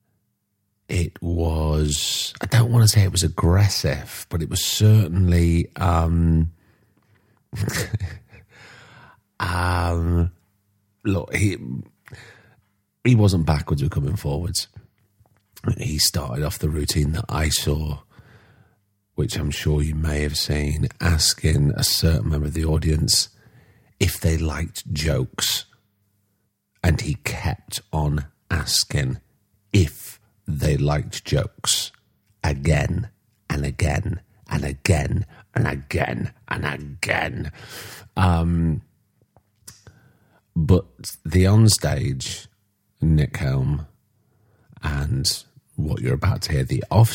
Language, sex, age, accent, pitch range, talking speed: English, male, 40-59, British, 85-110 Hz, 105 wpm